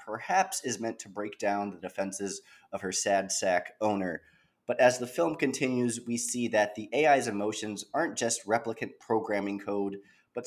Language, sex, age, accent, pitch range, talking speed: English, male, 30-49, American, 105-130 Hz, 170 wpm